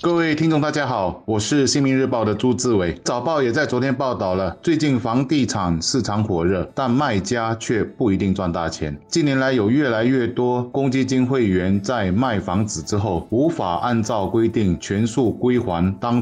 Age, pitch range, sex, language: 20-39, 95-130 Hz, male, Chinese